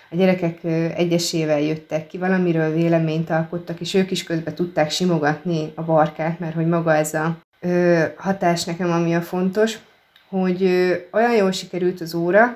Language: Hungarian